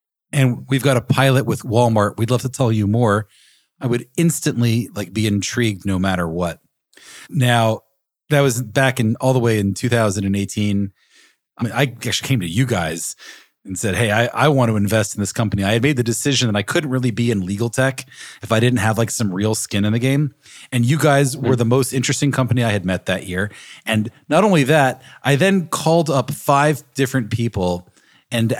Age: 40-59